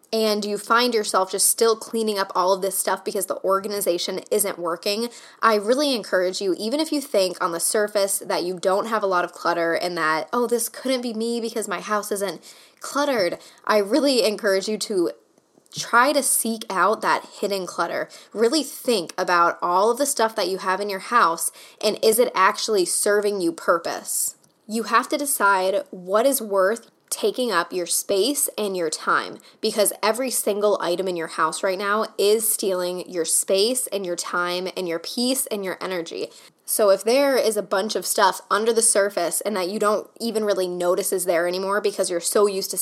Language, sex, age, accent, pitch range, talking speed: English, female, 10-29, American, 185-230 Hz, 200 wpm